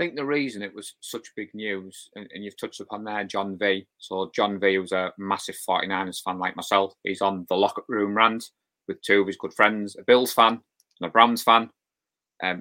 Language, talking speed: English, 220 wpm